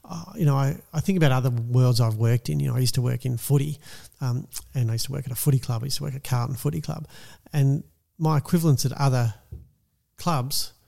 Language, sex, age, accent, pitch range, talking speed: English, male, 40-59, Australian, 120-150 Hz, 235 wpm